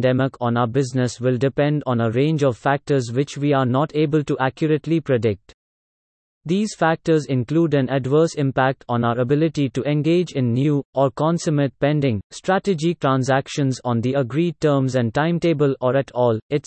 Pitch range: 130-155 Hz